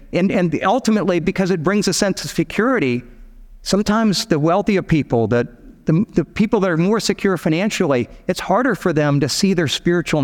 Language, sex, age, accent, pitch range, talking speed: English, male, 50-69, American, 135-195 Hz, 180 wpm